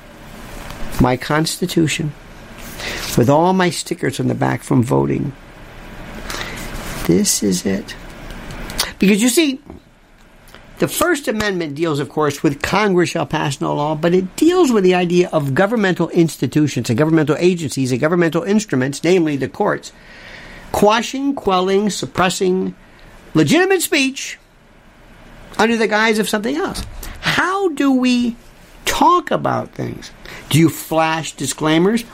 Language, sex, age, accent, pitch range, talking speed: English, male, 50-69, American, 155-215 Hz, 125 wpm